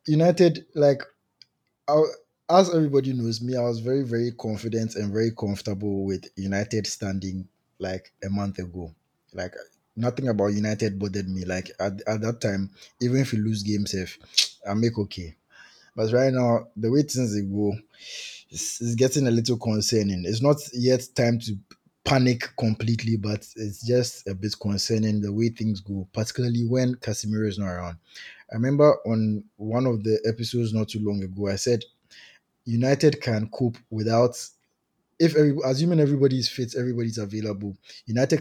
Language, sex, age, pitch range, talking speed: English, male, 20-39, 105-125 Hz, 160 wpm